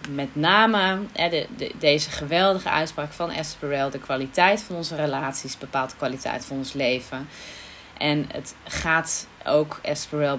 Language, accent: Dutch, Dutch